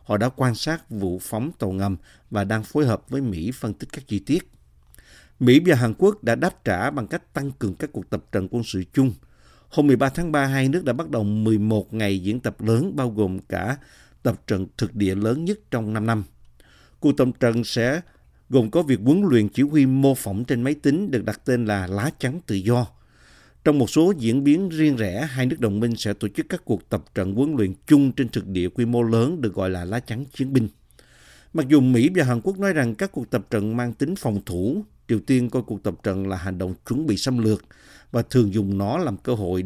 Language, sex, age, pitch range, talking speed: Vietnamese, male, 50-69, 100-135 Hz, 240 wpm